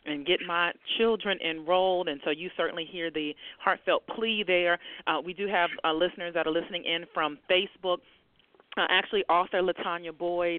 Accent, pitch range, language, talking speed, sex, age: American, 160-190 Hz, English, 175 wpm, female, 40-59